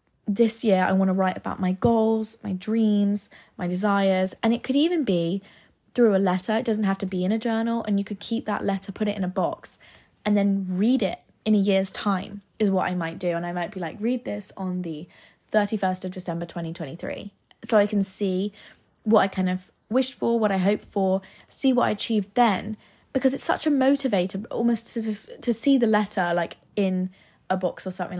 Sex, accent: female, British